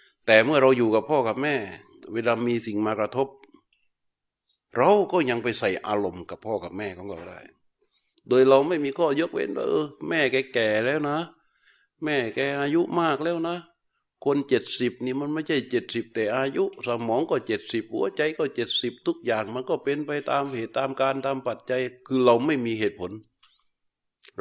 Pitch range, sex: 100-135 Hz, male